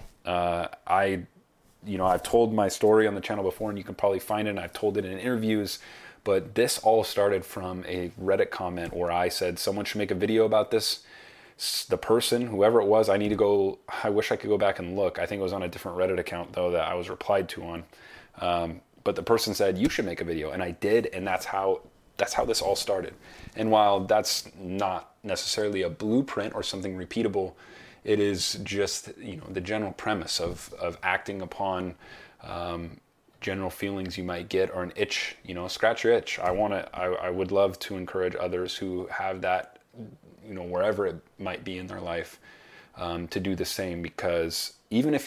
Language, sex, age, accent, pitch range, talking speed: English, male, 30-49, American, 90-100 Hz, 215 wpm